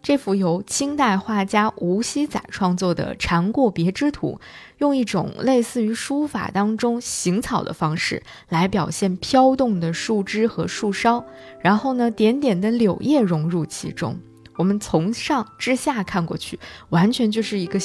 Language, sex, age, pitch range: Chinese, female, 20-39, 180-245 Hz